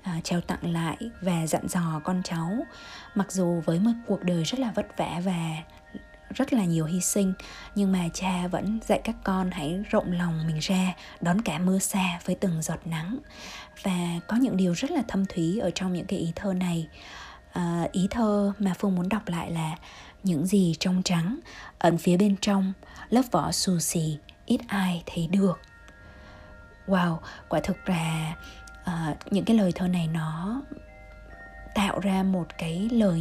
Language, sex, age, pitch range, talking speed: Vietnamese, female, 20-39, 170-205 Hz, 180 wpm